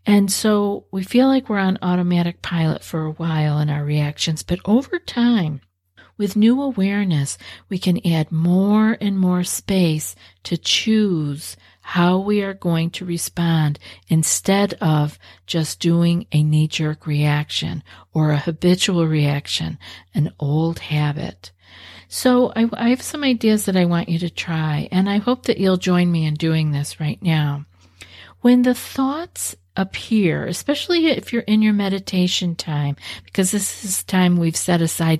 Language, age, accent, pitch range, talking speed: English, 50-69, American, 150-195 Hz, 160 wpm